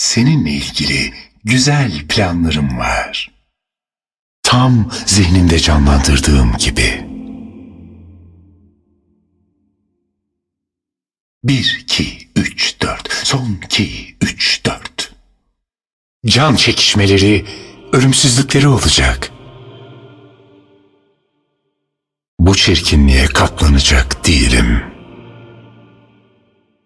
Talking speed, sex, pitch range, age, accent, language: 55 wpm, male, 80-105 Hz, 60-79, native, Turkish